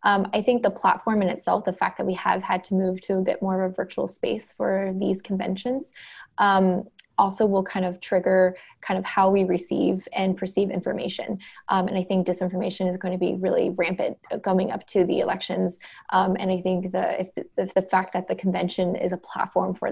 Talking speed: 210 wpm